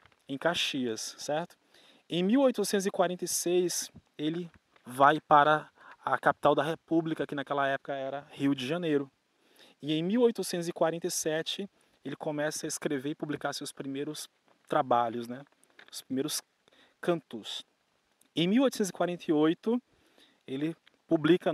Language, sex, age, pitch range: Portuguese, male, 20-39, 145-185 Hz